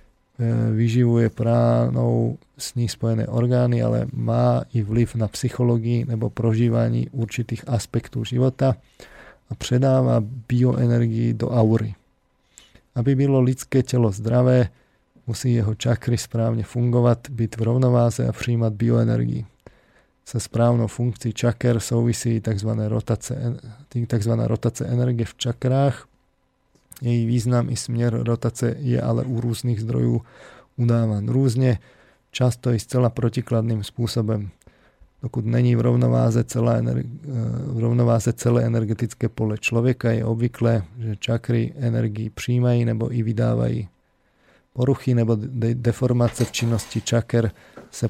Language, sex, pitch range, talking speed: Slovak, male, 115-120 Hz, 115 wpm